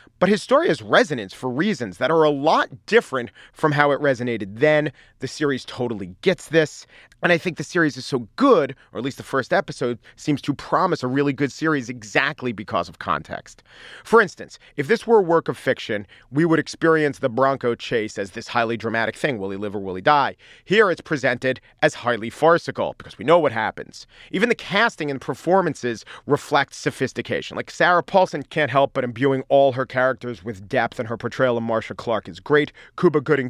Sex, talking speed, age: male, 205 wpm, 40-59